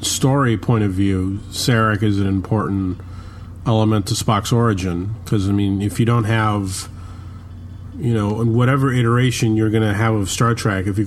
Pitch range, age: 95-115 Hz, 40-59